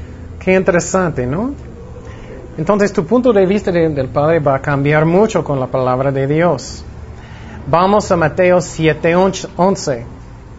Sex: male